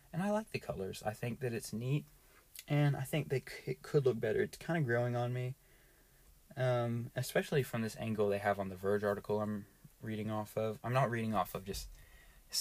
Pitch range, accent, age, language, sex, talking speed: 105-135 Hz, American, 20-39, English, male, 220 wpm